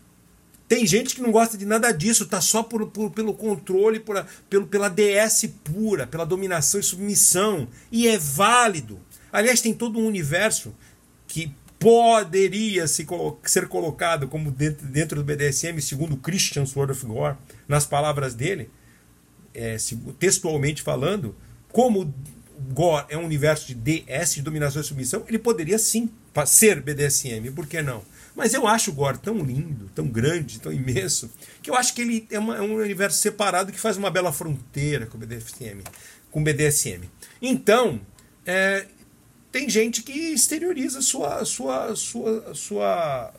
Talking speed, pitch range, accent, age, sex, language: 150 wpm, 130-210 Hz, Brazilian, 50-69, male, Portuguese